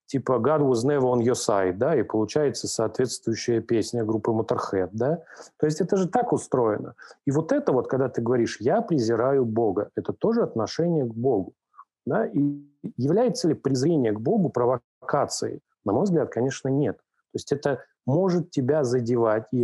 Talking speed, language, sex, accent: 170 wpm, Russian, male, native